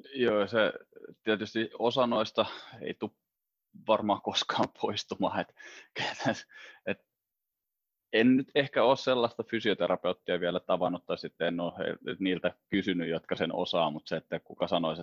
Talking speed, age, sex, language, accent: 135 wpm, 20-39, male, Finnish, native